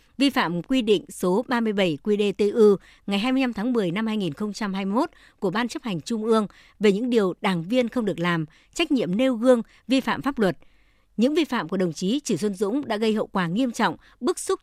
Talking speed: 210 wpm